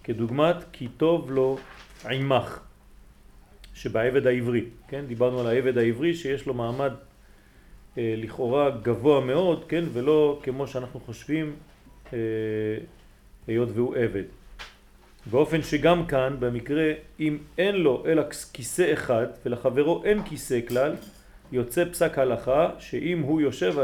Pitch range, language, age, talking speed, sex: 120-155 Hz, French, 40-59, 125 wpm, male